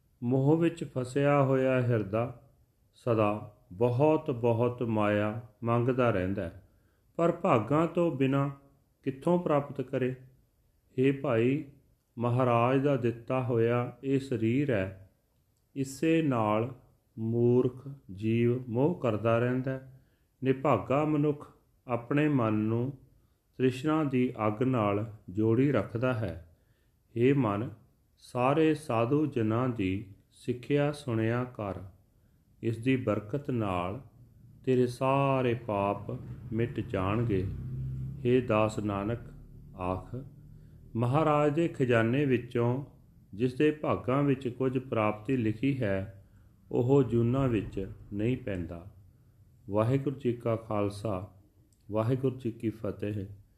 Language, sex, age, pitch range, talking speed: Punjabi, male, 40-59, 110-135 Hz, 100 wpm